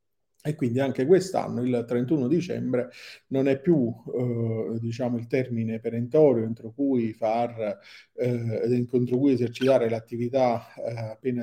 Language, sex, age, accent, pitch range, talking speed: Italian, male, 40-59, native, 120-145 Hz, 115 wpm